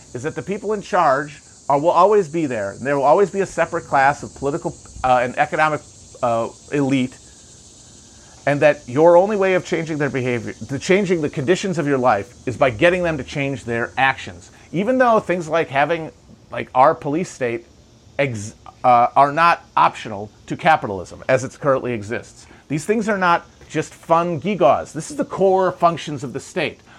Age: 40-59